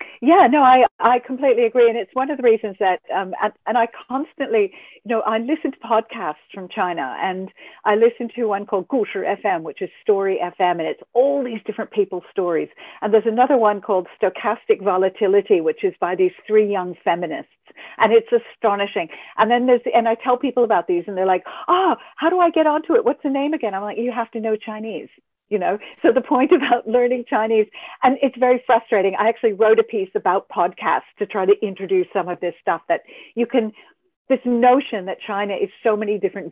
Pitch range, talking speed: 200-270 Hz, 215 wpm